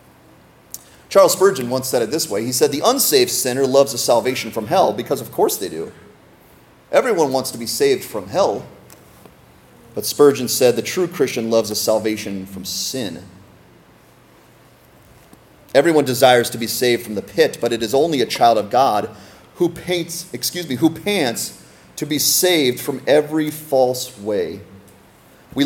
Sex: male